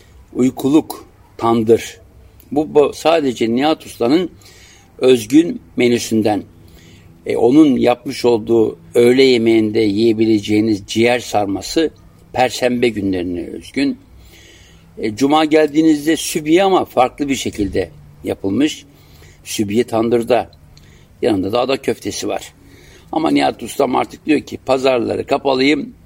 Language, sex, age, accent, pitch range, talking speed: German, male, 60-79, Turkish, 105-130 Hz, 105 wpm